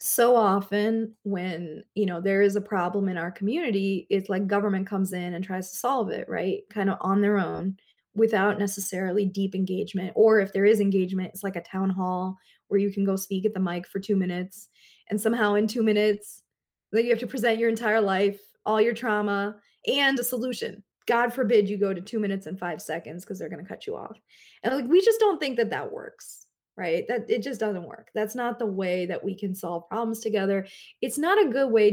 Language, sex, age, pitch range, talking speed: English, female, 20-39, 195-225 Hz, 225 wpm